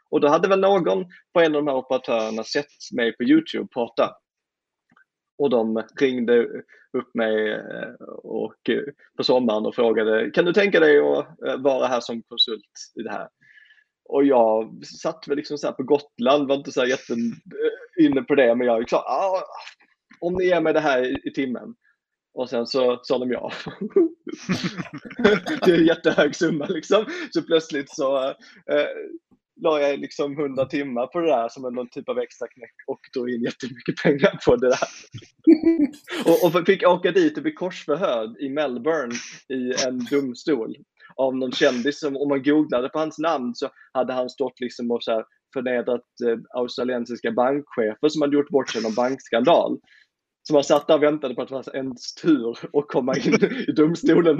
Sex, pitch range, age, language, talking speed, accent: male, 125-180 Hz, 20-39, Swedish, 175 wpm, native